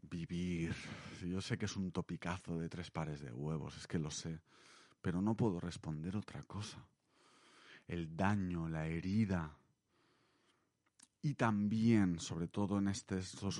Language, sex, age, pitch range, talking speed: Spanish, male, 30-49, 85-100 Hz, 145 wpm